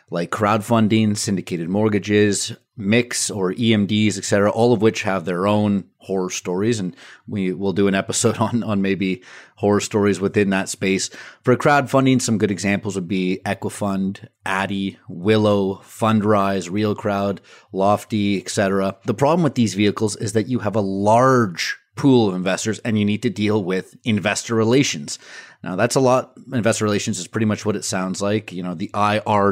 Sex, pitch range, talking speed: male, 95-110 Hz, 170 wpm